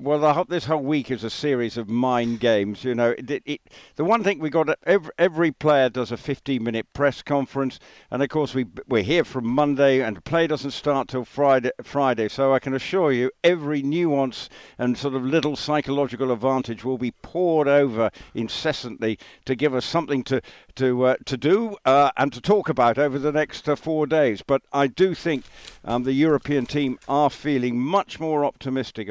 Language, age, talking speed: English, 60-79, 195 wpm